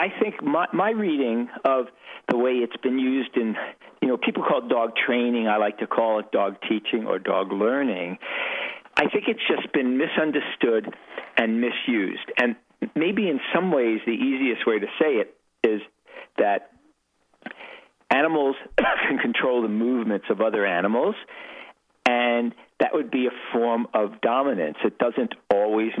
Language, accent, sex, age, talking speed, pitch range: English, American, male, 50-69, 160 wpm, 100-130 Hz